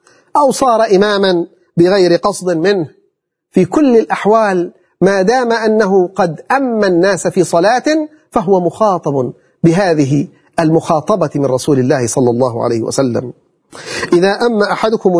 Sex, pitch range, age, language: male, 155-225 Hz, 40-59, Arabic